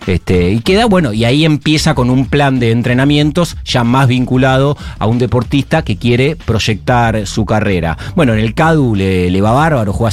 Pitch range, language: 115-155 Hz, Spanish